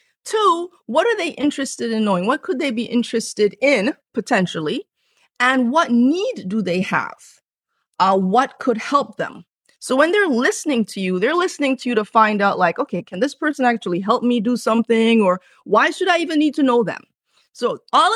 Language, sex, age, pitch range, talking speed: English, female, 30-49, 200-280 Hz, 195 wpm